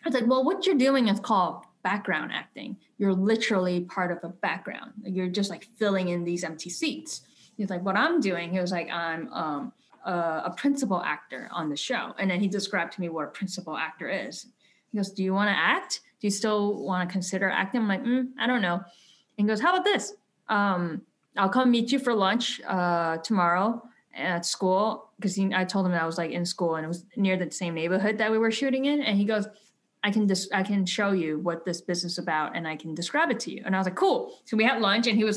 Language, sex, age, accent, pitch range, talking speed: English, female, 10-29, American, 175-220 Hz, 245 wpm